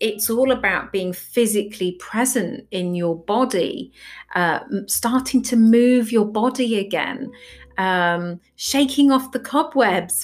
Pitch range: 180-240 Hz